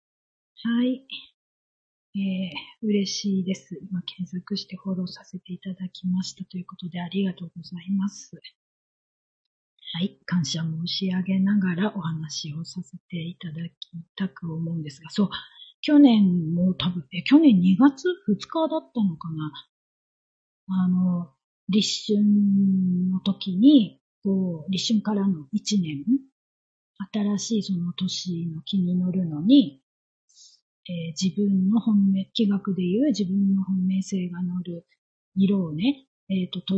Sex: female